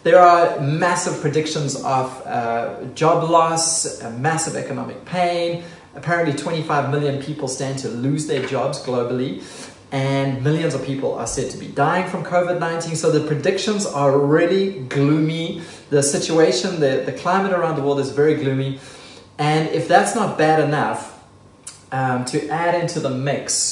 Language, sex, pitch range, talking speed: English, male, 125-155 Hz, 155 wpm